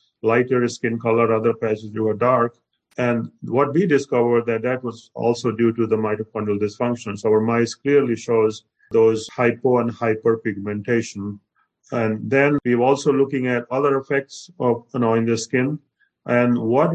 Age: 50-69